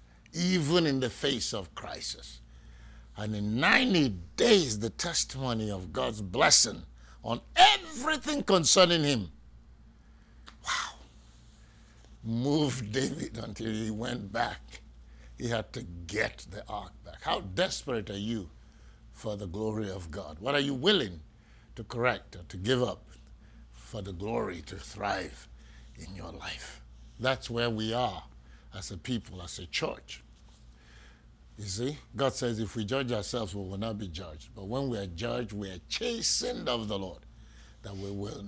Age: 60-79